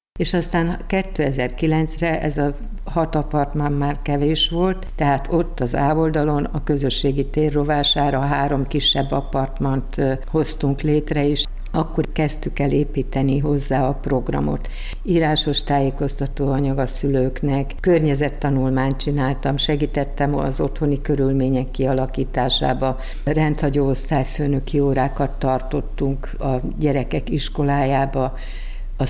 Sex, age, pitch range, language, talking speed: female, 50-69, 135-155 Hz, Hungarian, 105 wpm